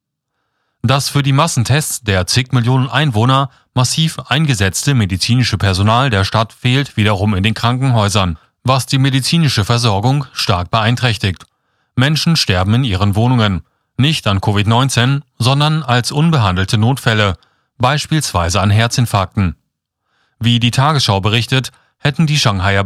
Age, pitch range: 30-49, 105-135 Hz